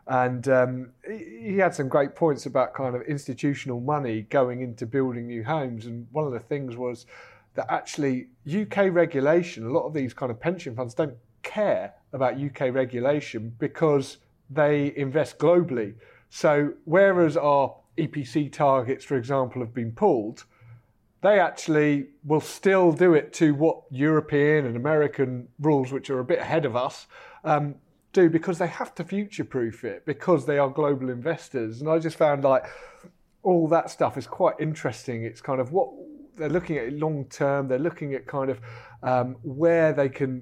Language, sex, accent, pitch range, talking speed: English, male, British, 125-160 Hz, 170 wpm